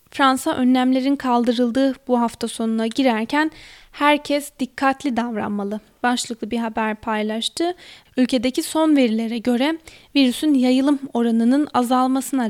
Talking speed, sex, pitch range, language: 105 wpm, female, 235-280 Hz, Turkish